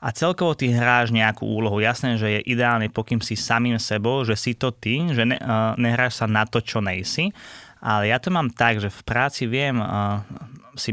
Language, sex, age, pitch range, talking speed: Slovak, male, 20-39, 105-125 Hz, 210 wpm